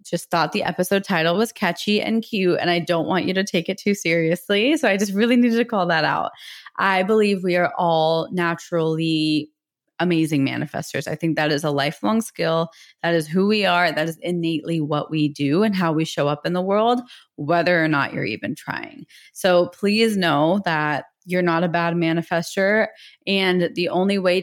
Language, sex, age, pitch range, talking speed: English, female, 20-39, 160-200 Hz, 200 wpm